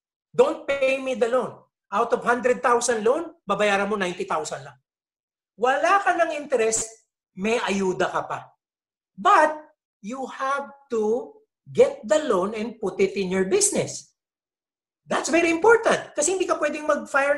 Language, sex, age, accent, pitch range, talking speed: English, male, 50-69, Filipino, 210-310 Hz, 145 wpm